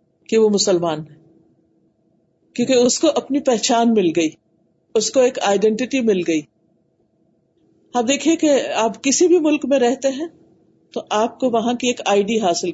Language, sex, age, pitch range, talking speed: Urdu, female, 50-69, 185-250 Hz, 170 wpm